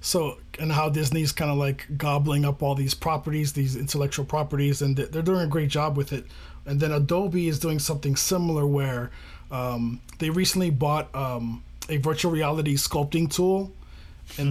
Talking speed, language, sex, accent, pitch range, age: 175 wpm, English, male, American, 140-160 Hz, 20-39